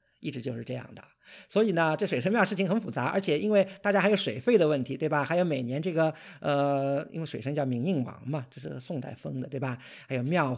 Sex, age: male, 50-69